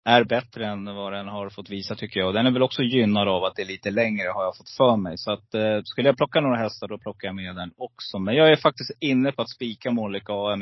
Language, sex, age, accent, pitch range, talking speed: Swedish, male, 30-49, native, 105-130 Hz, 280 wpm